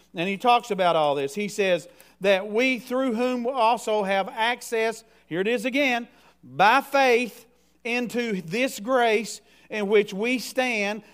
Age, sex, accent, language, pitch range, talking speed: 50-69, male, American, English, 210-245 Hz, 150 wpm